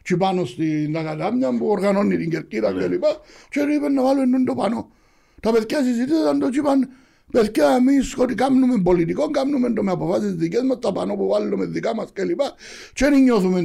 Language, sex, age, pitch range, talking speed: Greek, male, 60-79, 165-260 Hz, 125 wpm